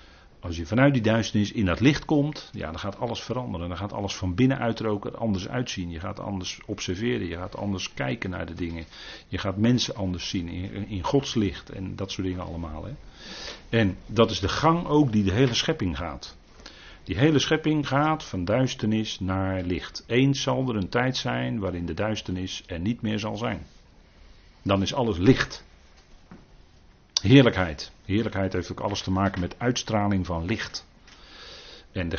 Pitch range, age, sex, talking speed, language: 90-125 Hz, 50-69, male, 180 wpm, Dutch